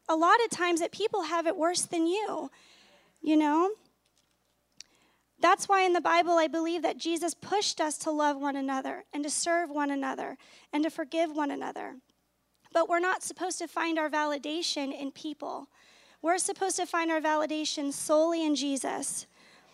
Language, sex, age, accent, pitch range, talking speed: English, female, 30-49, American, 295-345 Hz, 175 wpm